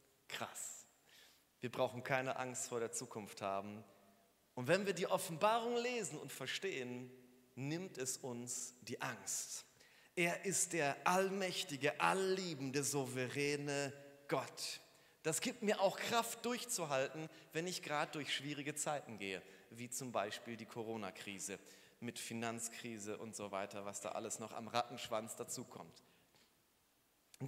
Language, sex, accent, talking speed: German, male, German, 135 wpm